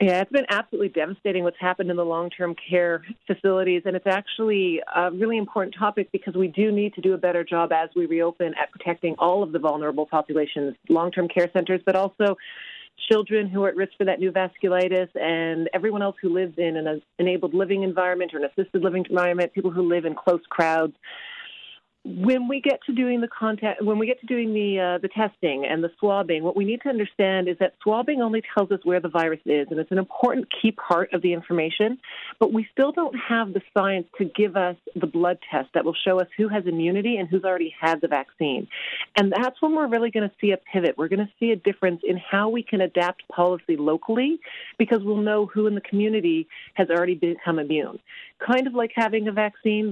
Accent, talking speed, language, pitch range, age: American, 220 wpm, English, 175-215 Hz, 40-59